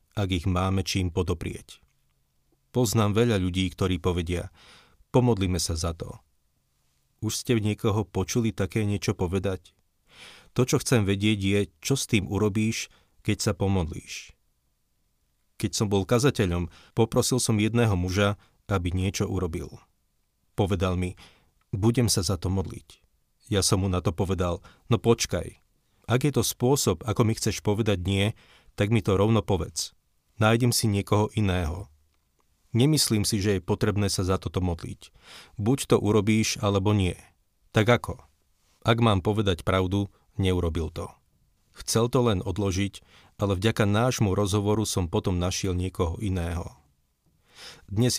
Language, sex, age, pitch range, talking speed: Slovak, male, 40-59, 90-110 Hz, 140 wpm